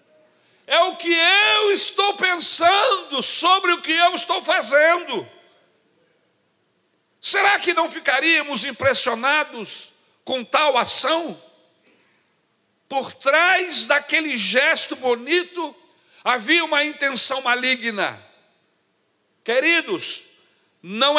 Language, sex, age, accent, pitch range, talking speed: Portuguese, male, 60-79, Brazilian, 250-345 Hz, 90 wpm